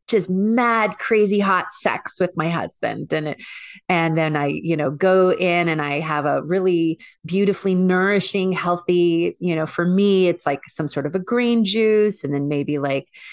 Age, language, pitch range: 30-49, English, 155-190 Hz